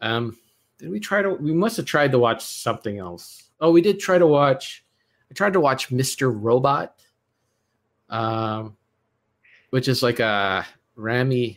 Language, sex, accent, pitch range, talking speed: English, male, American, 110-135 Hz, 160 wpm